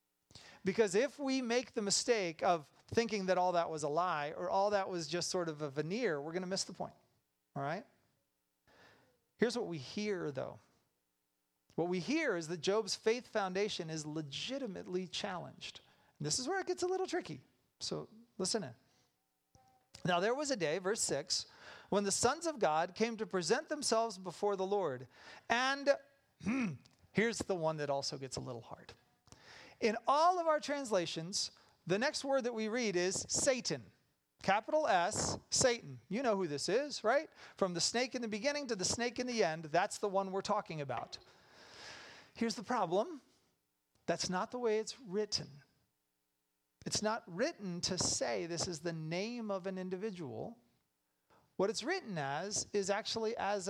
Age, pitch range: 40-59, 155-230 Hz